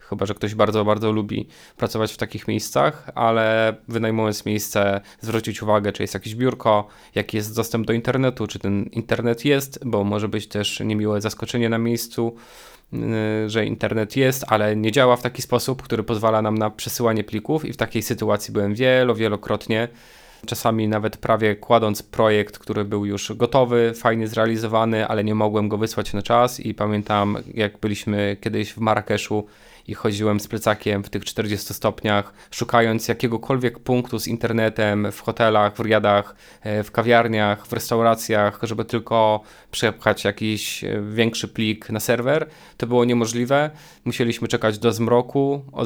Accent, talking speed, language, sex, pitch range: native, 155 wpm, Polish, male, 105-115 Hz